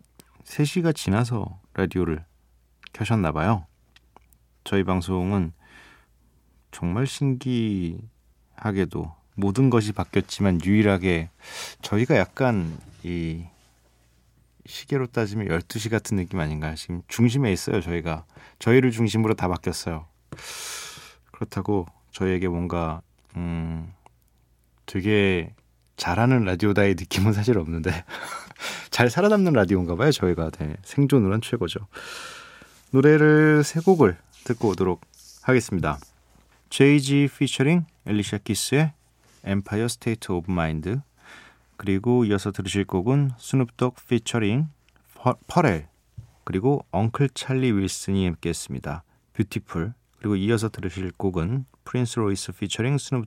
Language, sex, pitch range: Korean, male, 85-125 Hz